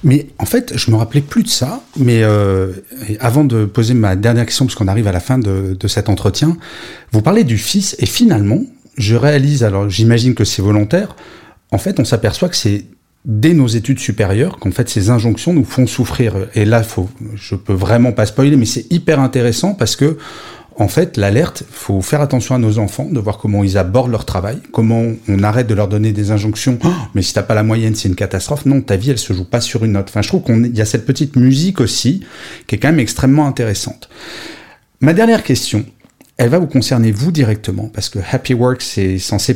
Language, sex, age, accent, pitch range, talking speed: French, male, 30-49, French, 105-135 Hz, 230 wpm